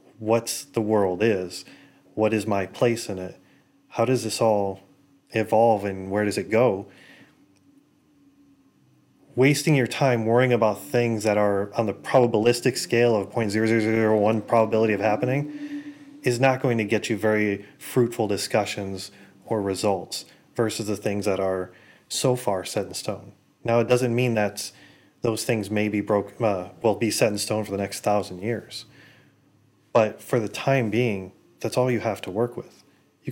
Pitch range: 100-120 Hz